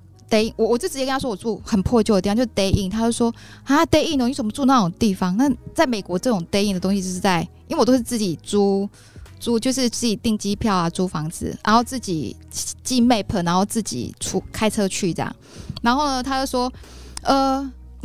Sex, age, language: female, 20-39, Chinese